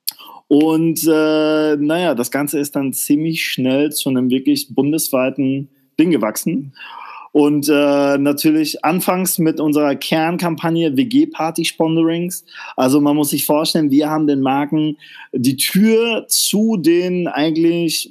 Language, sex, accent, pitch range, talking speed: German, male, German, 135-165 Hz, 125 wpm